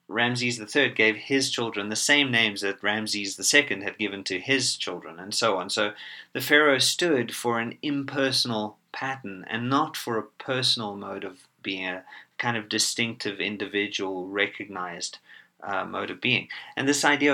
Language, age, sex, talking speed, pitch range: English, 30-49, male, 165 wpm, 100-130 Hz